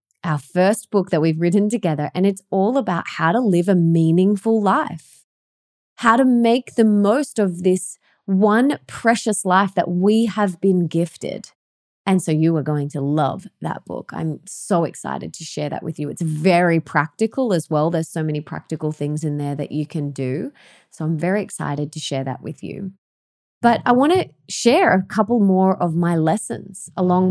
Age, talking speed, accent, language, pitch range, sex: 20-39, 190 wpm, Australian, English, 165-230 Hz, female